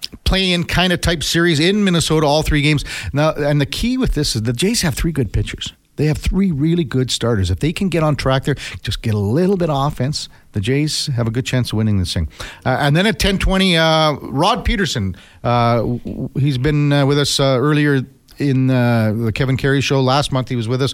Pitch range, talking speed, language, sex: 115-165 Hz, 235 wpm, English, male